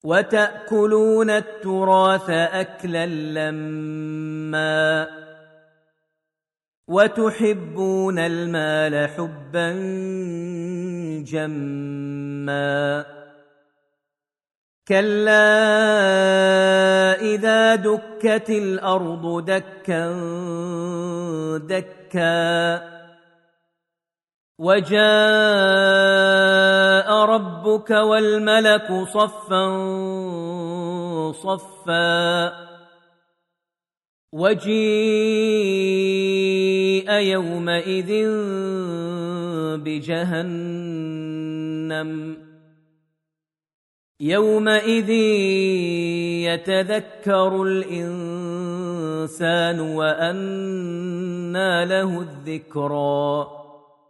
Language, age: Arabic, 40-59